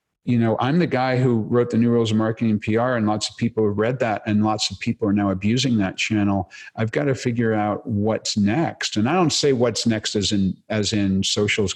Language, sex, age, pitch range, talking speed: English, male, 50-69, 100-125 Hz, 270 wpm